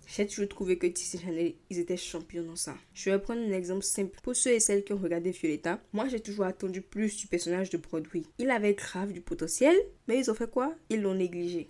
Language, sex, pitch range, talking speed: French, female, 175-220 Hz, 240 wpm